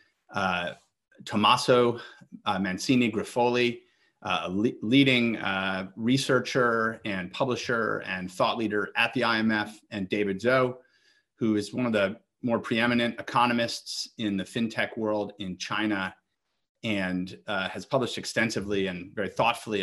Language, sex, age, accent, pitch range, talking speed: English, male, 30-49, American, 100-120 Hz, 125 wpm